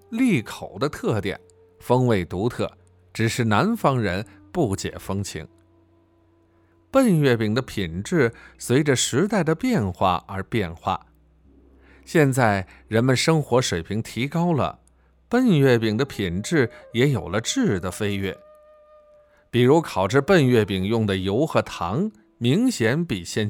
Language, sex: Chinese, male